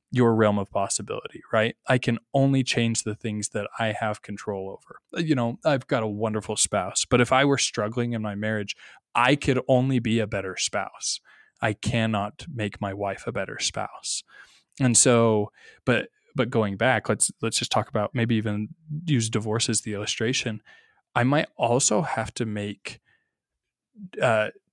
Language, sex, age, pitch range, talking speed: English, male, 20-39, 105-120 Hz, 170 wpm